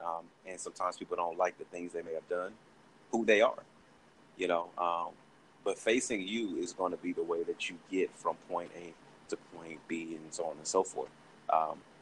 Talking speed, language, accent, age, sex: 215 wpm, English, American, 30-49, male